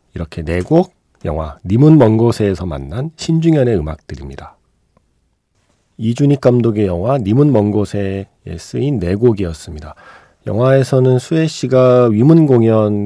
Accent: native